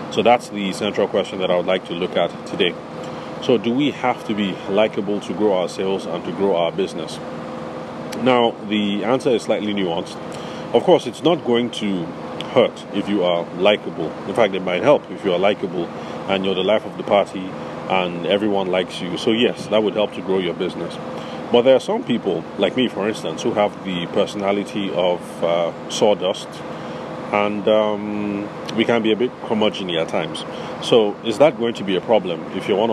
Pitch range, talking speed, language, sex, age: 95-115 Hz, 205 wpm, English, male, 30-49